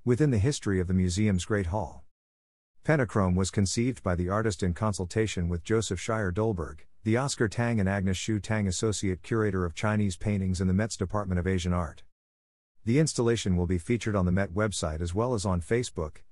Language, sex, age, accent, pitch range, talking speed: English, male, 50-69, American, 90-115 Hz, 195 wpm